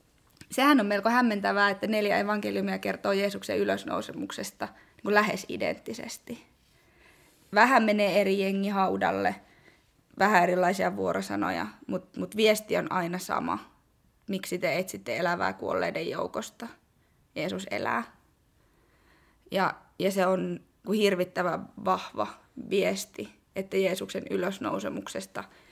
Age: 20-39